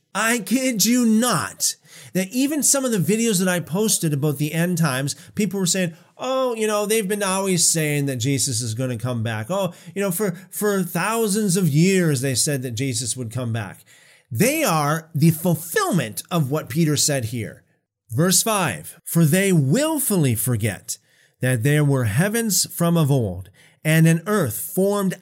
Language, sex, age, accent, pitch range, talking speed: English, male, 40-59, American, 140-195 Hz, 180 wpm